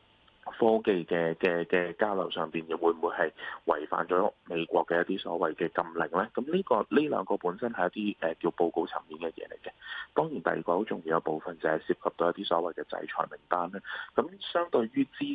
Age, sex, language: 20-39, male, Chinese